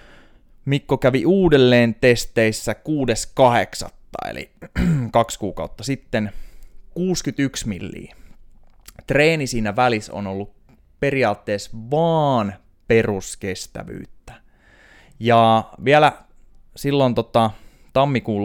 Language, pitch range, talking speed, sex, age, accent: Finnish, 95-125 Hz, 75 wpm, male, 20-39, native